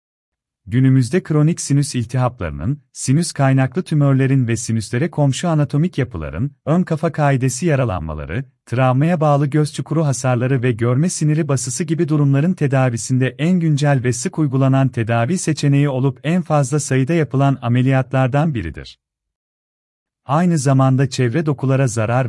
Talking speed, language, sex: 125 wpm, Turkish, male